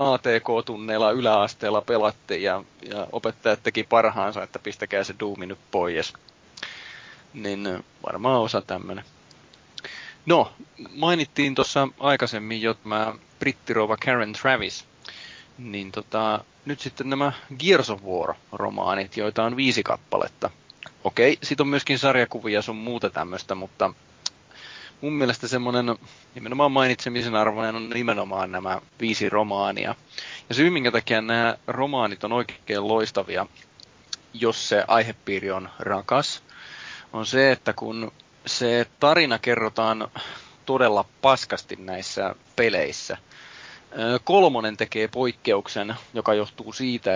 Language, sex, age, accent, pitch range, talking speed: Finnish, male, 30-49, native, 105-125 Hz, 115 wpm